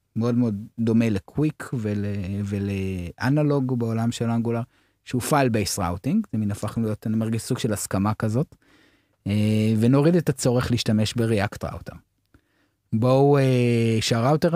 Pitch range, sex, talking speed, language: 105-135 Hz, male, 120 wpm, Hebrew